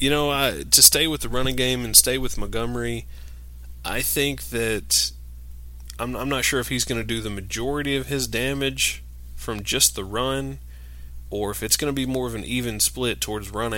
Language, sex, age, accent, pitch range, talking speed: English, male, 20-39, American, 100-125 Hz, 200 wpm